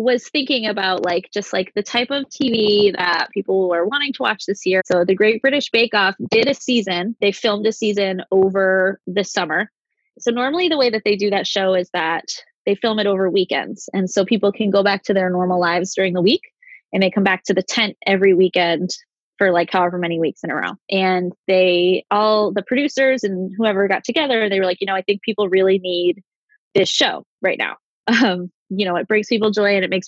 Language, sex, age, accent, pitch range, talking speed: English, female, 20-39, American, 185-225 Hz, 225 wpm